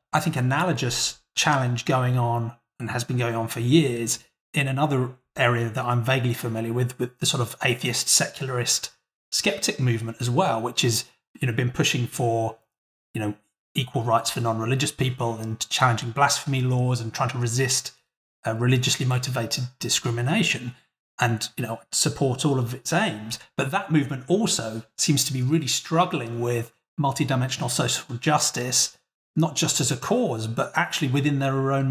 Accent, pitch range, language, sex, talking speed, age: British, 120-140 Hz, English, male, 165 wpm, 30-49